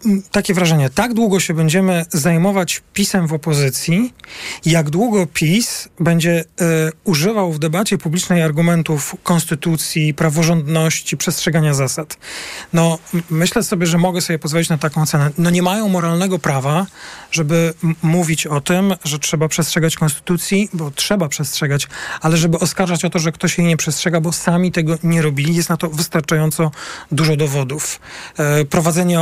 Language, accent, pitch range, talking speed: Polish, native, 160-185 Hz, 150 wpm